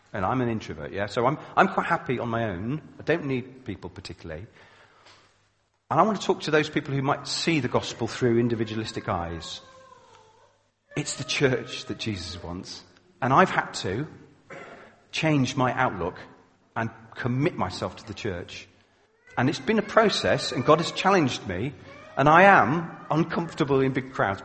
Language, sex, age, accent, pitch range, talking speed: English, male, 40-59, British, 115-155 Hz, 170 wpm